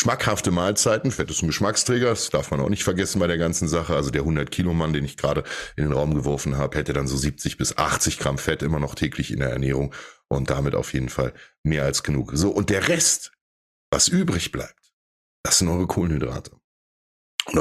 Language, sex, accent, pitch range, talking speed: English, male, German, 75-105 Hz, 215 wpm